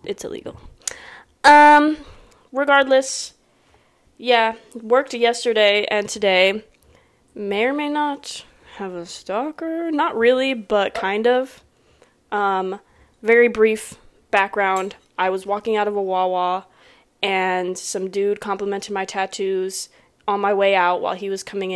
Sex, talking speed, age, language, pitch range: female, 125 wpm, 20-39, English, 195-240 Hz